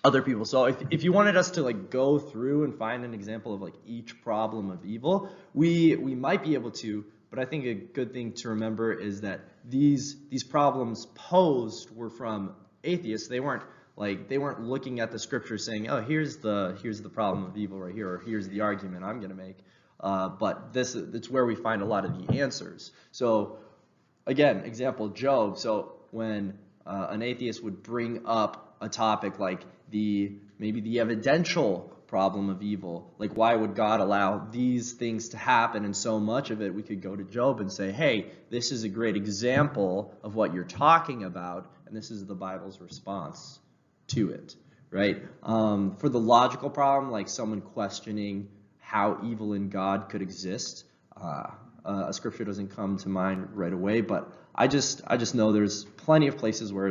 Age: 20-39